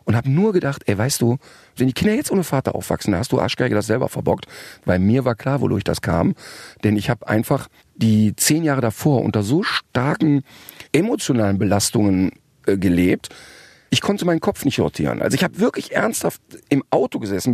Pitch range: 115-155 Hz